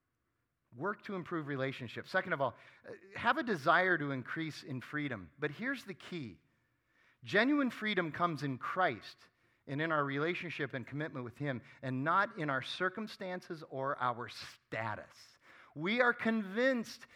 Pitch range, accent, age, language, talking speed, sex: 140-195 Hz, American, 40-59, English, 145 wpm, male